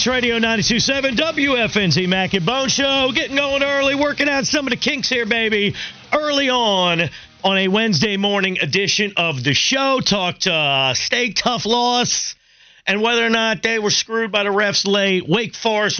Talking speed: 175 wpm